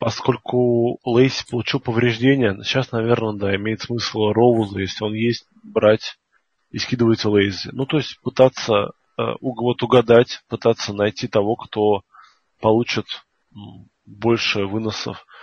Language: Russian